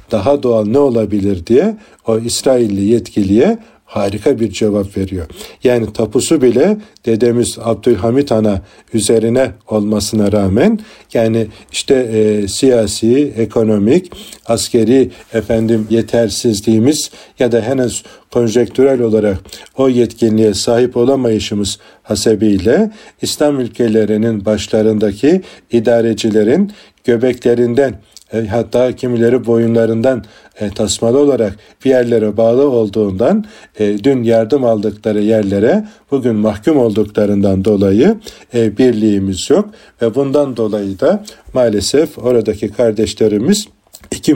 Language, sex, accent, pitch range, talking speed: Turkish, male, native, 105-125 Hz, 95 wpm